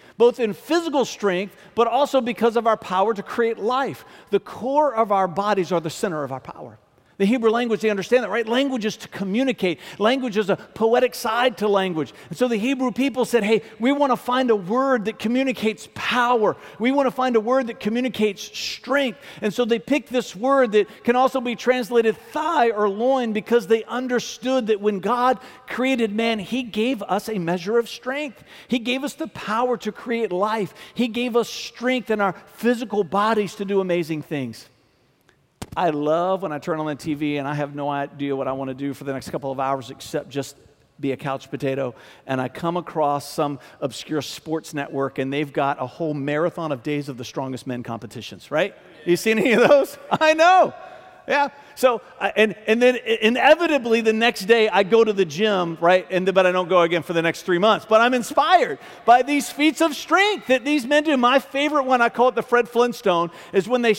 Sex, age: male, 50-69